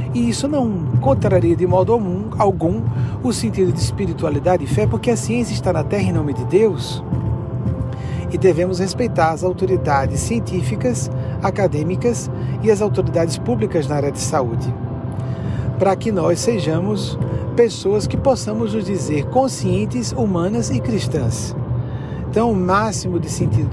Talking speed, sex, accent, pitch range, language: 140 wpm, male, Brazilian, 125-170 Hz, Portuguese